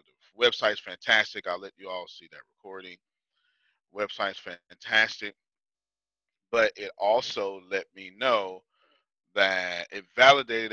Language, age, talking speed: English, 30-49, 110 wpm